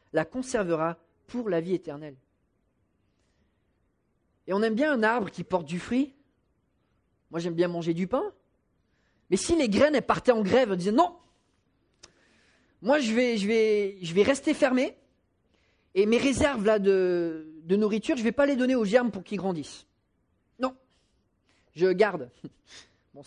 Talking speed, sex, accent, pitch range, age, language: 155 wpm, male, French, 160-225 Hz, 30-49, English